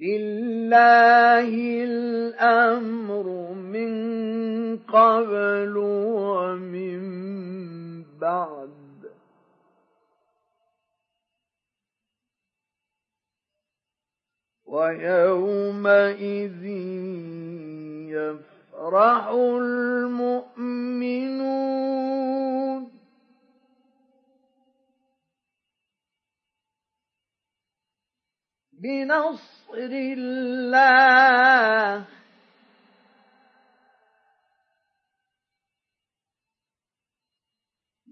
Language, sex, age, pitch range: Arabic, male, 50-69, 195-255 Hz